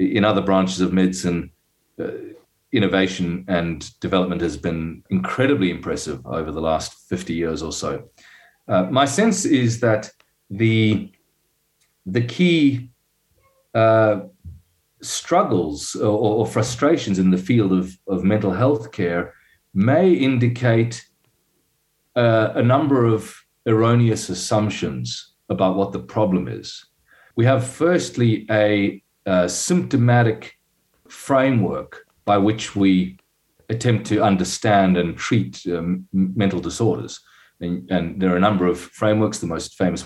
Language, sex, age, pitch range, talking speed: English, male, 40-59, 90-115 Hz, 125 wpm